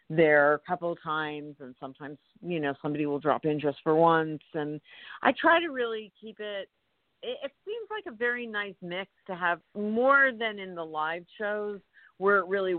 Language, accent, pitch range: English, American, 150-180 Hz